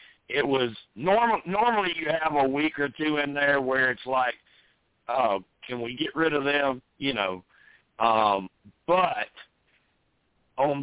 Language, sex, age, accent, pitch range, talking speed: English, male, 60-79, American, 120-145 Hz, 150 wpm